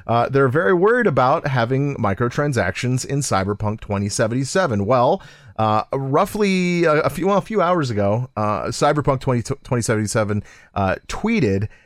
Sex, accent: male, American